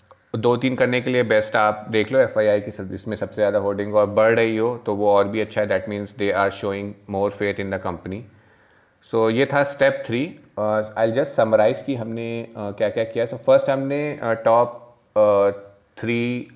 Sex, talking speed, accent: male, 205 wpm, native